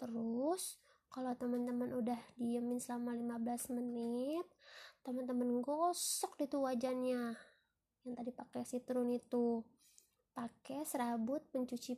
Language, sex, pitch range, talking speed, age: Indonesian, female, 245-295 Hz, 105 wpm, 20-39